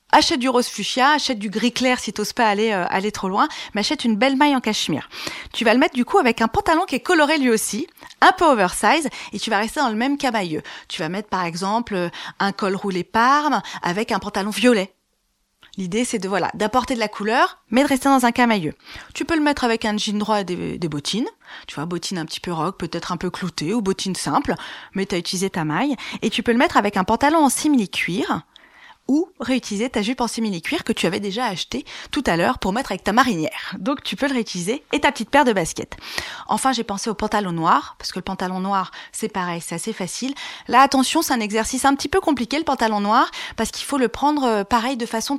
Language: French